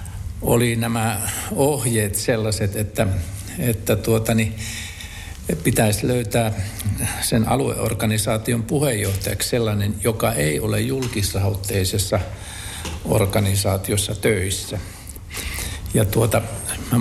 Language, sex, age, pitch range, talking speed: Finnish, male, 60-79, 95-120 Hz, 80 wpm